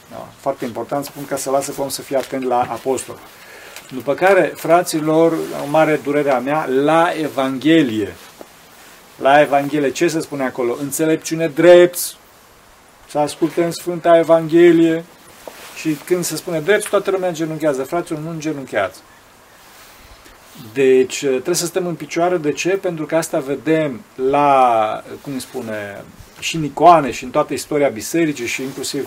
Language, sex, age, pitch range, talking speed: Romanian, male, 40-59, 135-170 Hz, 145 wpm